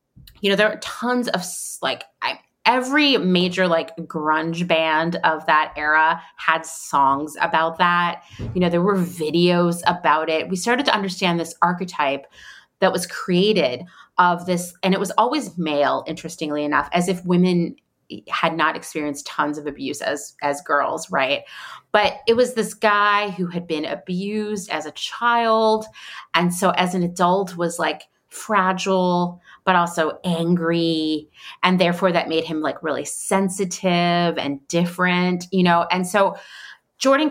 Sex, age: female, 30-49